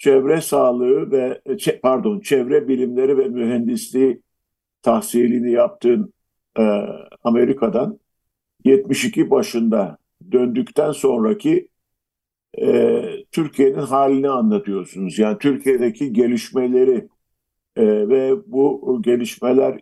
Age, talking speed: 50-69, 80 wpm